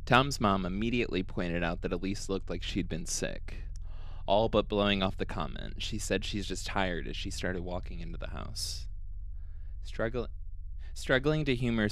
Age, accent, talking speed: 20-39, American, 165 wpm